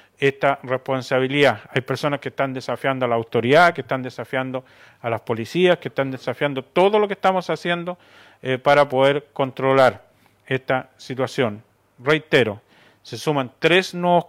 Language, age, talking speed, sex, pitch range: Spanish, 40-59, 145 wpm, male, 125-155 Hz